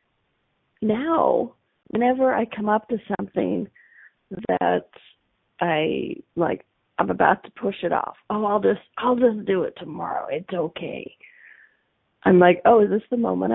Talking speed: 145 wpm